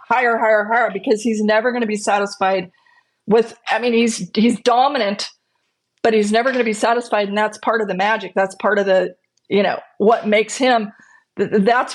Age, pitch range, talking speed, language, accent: 40-59, 205-245 Hz, 195 wpm, English, American